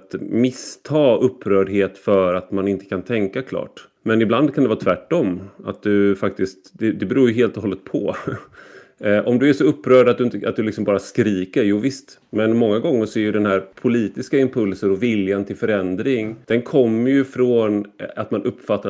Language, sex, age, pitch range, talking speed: Swedish, male, 30-49, 100-115 Hz, 200 wpm